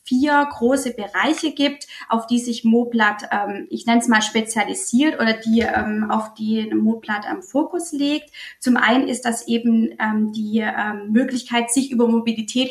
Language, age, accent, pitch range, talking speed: German, 30-49, German, 220-255 Hz, 170 wpm